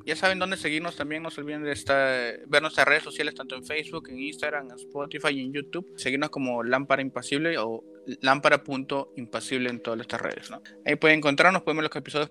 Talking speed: 210 wpm